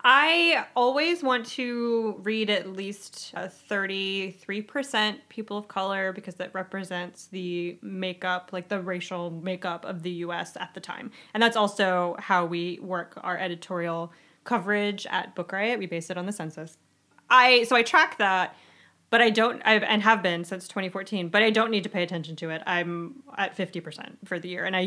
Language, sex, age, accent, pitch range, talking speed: English, female, 20-39, American, 185-230 Hz, 190 wpm